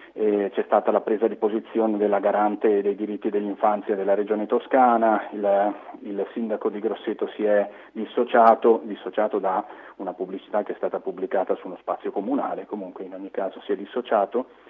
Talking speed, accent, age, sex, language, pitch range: 165 wpm, native, 30-49, male, Italian, 100-115 Hz